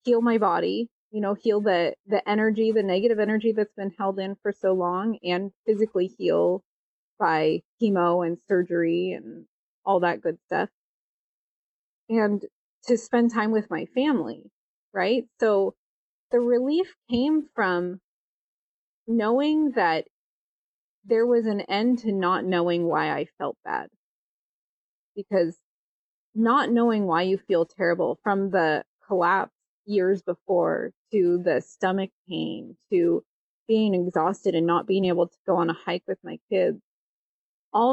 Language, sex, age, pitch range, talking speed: English, female, 20-39, 185-230 Hz, 140 wpm